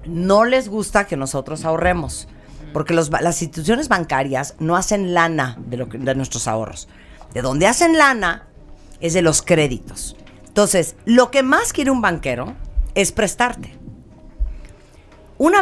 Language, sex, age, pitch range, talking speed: Spanish, female, 40-59, 145-225 Hz, 140 wpm